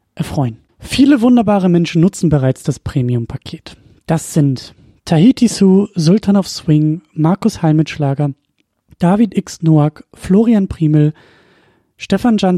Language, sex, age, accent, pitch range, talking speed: German, male, 30-49, German, 150-195 Hz, 110 wpm